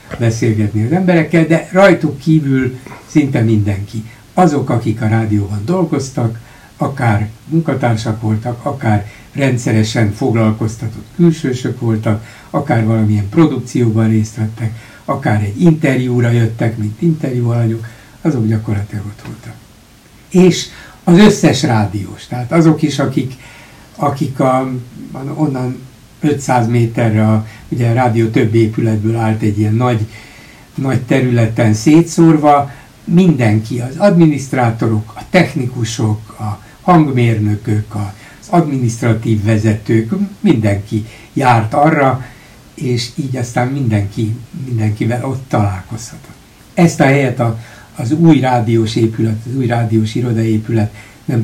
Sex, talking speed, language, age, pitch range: male, 110 wpm, Hungarian, 60-79, 110-140 Hz